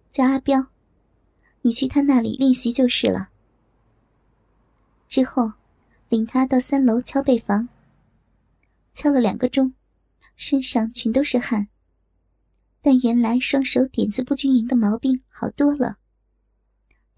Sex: male